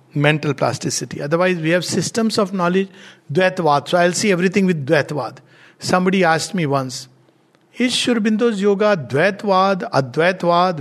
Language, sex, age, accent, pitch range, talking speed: English, male, 60-79, Indian, 165-235 Hz, 135 wpm